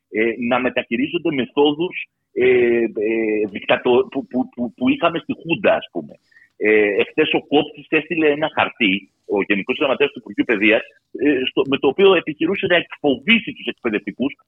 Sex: male